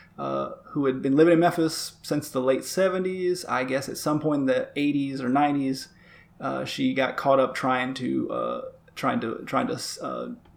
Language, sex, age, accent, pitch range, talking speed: English, male, 30-49, American, 130-170 Hz, 195 wpm